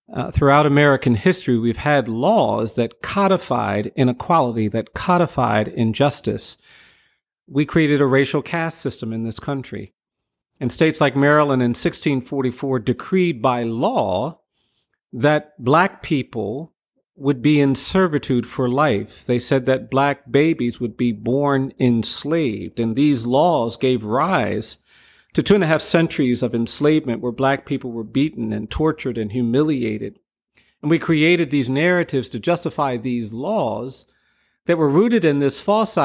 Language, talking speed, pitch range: English, 145 wpm, 120-150 Hz